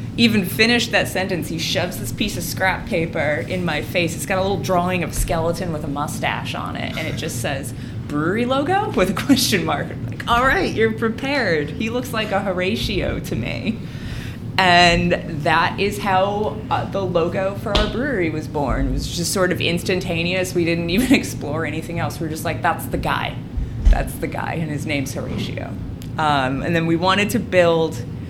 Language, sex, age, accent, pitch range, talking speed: English, female, 20-39, American, 140-180 Hz, 200 wpm